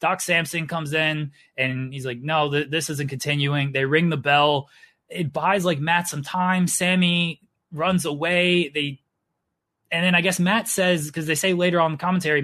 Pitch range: 135-175 Hz